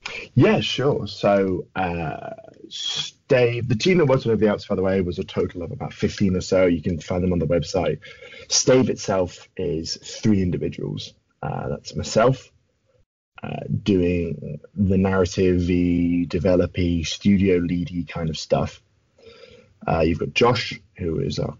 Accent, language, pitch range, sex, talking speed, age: British, English, 85-100 Hz, male, 160 wpm, 20-39